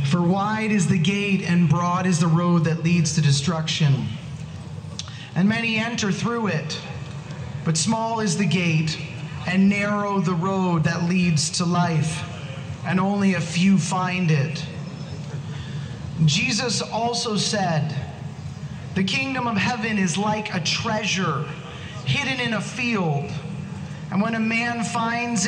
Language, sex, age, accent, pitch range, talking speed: English, male, 30-49, American, 150-200 Hz, 135 wpm